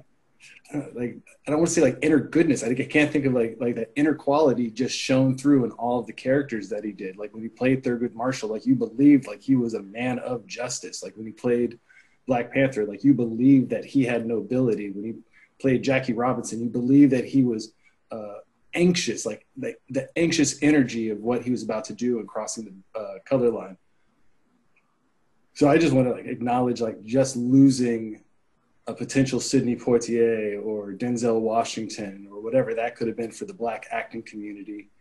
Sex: male